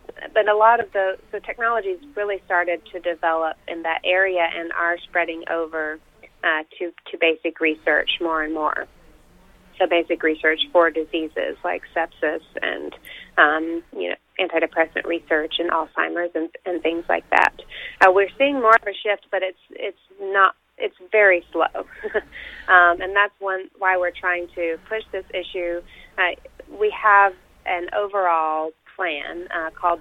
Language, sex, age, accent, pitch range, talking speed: English, female, 30-49, American, 165-190 Hz, 160 wpm